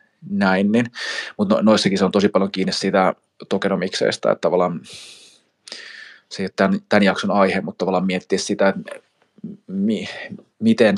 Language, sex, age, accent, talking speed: Finnish, male, 20-39, native, 150 wpm